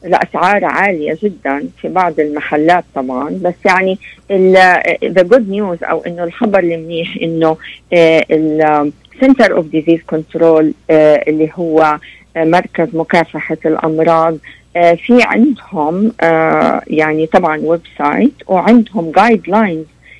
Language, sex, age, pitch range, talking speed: Arabic, female, 50-69, 160-205 Hz, 105 wpm